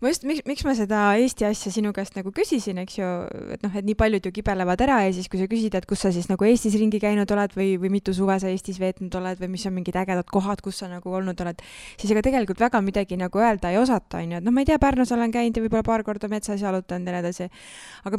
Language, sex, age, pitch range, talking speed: English, female, 20-39, 185-225 Hz, 255 wpm